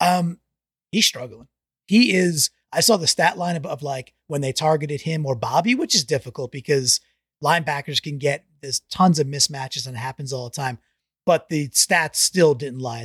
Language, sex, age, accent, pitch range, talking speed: English, male, 30-49, American, 140-180 Hz, 195 wpm